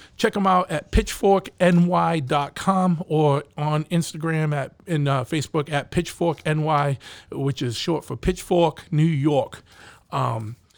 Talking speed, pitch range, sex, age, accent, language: 130 wpm, 145-180 Hz, male, 40-59, American, English